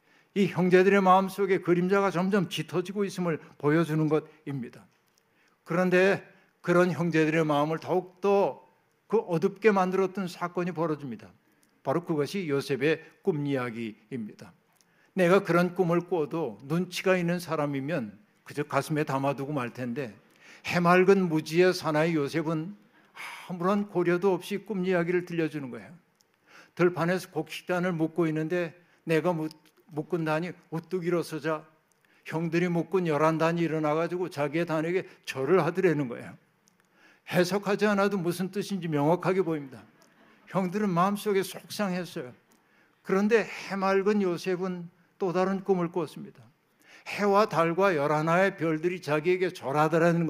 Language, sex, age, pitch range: Korean, male, 60-79, 155-185 Hz